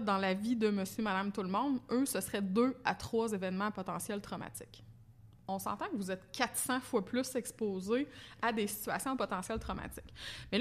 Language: French